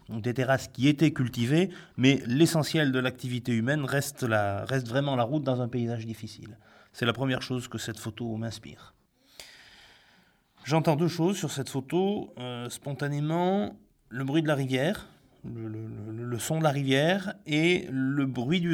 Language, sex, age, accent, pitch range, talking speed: French, male, 30-49, French, 115-140 Hz, 175 wpm